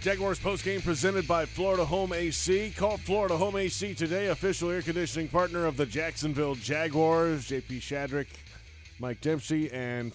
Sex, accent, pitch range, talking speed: male, American, 125-155 Hz, 155 wpm